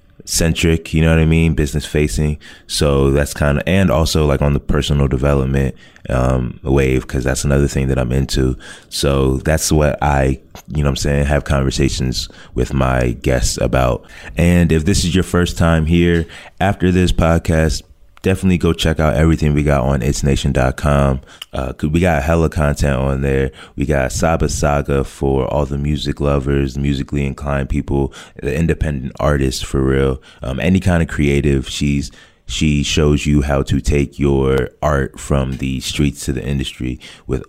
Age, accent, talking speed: 20-39, American, 175 wpm